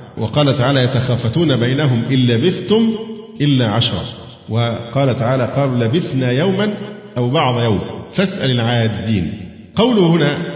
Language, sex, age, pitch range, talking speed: Arabic, male, 50-69, 115-155 Hz, 115 wpm